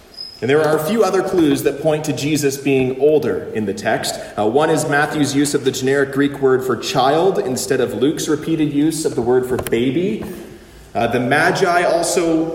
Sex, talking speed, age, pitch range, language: male, 200 wpm, 30-49, 135-180 Hz, English